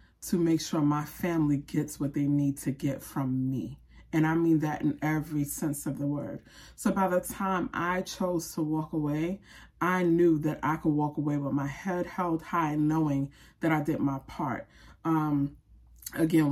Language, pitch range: English, 140-165 Hz